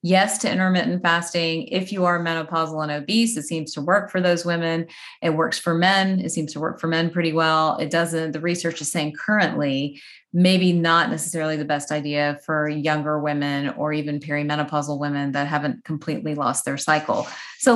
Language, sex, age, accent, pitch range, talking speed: English, female, 30-49, American, 155-180 Hz, 190 wpm